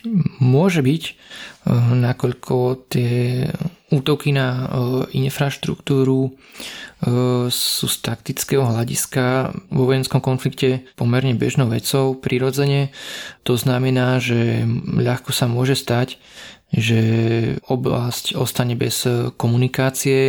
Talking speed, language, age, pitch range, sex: 90 wpm, Slovak, 20-39, 120-135 Hz, male